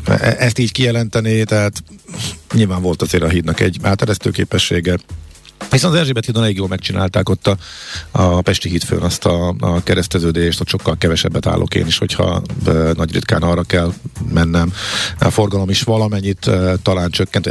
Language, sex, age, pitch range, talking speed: Hungarian, male, 50-69, 85-105 Hz, 160 wpm